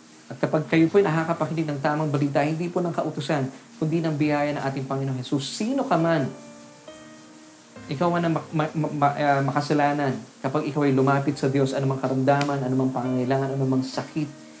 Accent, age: native, 20-39